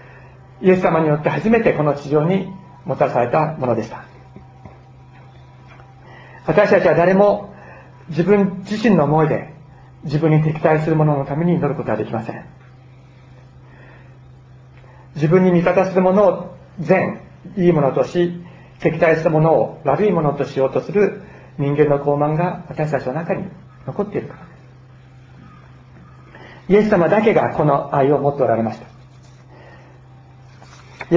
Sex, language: male, Japanese